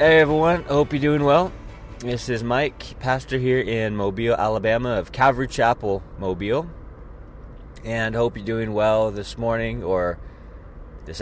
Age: 20-39